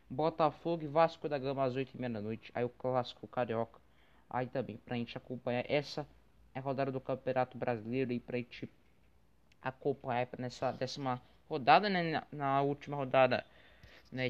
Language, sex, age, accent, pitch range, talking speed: Portuguese, male, 20-39, Brazilian, 125-150 Hz, 155 wpm